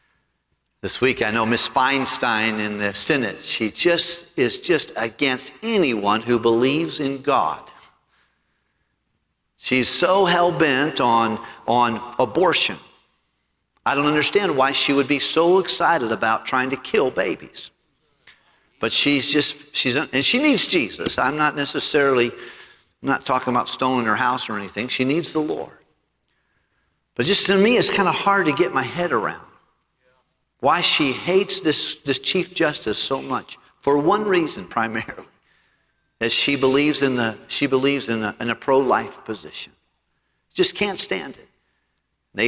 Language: English